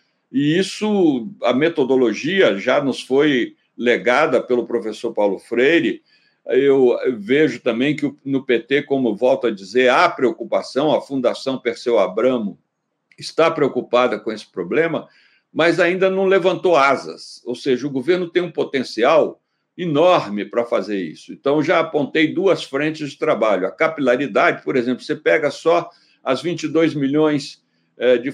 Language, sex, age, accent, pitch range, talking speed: Portuguese, male, 60-79, Brazilian, 130-185 Hz, 140 wpm